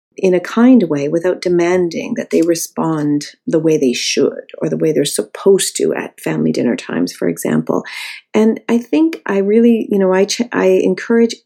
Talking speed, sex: 190 wpm, female